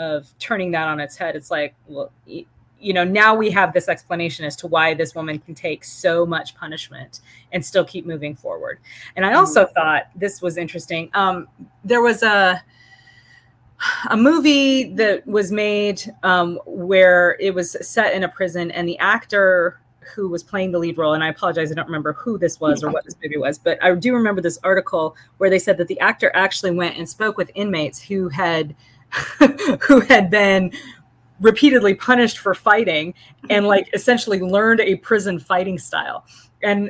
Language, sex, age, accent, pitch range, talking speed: English, female, 30-49, American, 155-200 Hz, 185 wpm